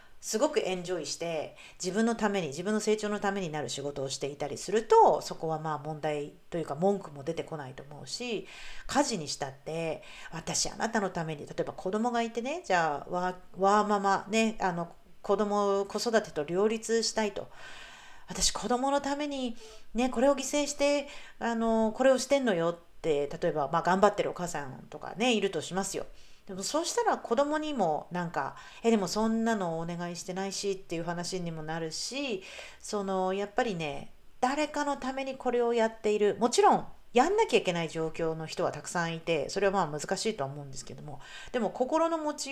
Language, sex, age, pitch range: Japanese, female, 40-59, 170-255 Hz